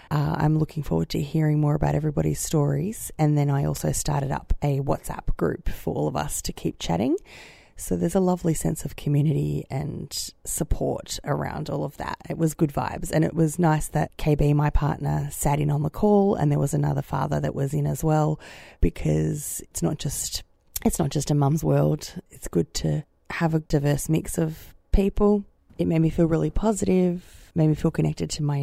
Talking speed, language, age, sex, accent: 205 wpm, English, 20-39, female, Australian